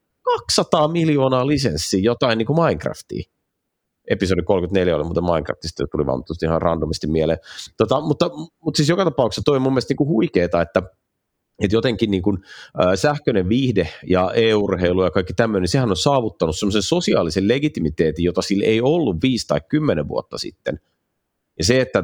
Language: Finnish